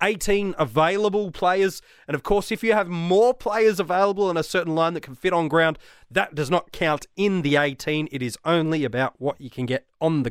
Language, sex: English, male